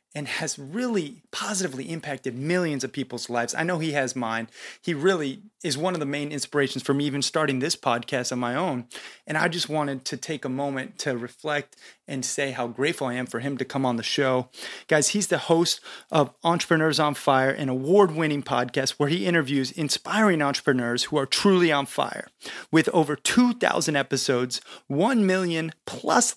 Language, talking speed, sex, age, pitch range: English, 185 wpm, male, 30-49, 130-170 Hz